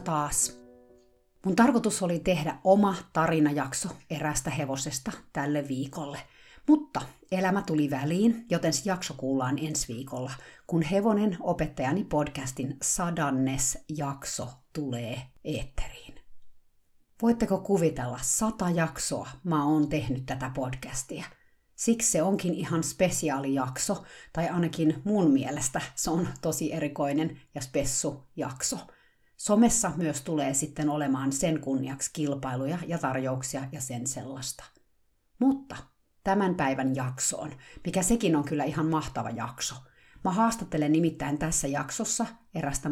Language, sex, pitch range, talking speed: Finnish, female, 135-180 Hz, 115 wpm